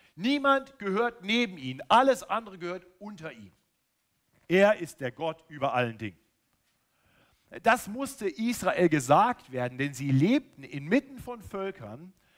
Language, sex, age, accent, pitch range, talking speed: German, male, 50-69, German, 145-210 Hz, 130 wpm